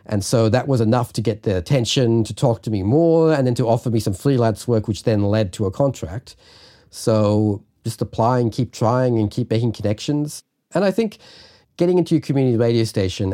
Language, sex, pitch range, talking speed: English, male, 100-120 Hz, 210 wpm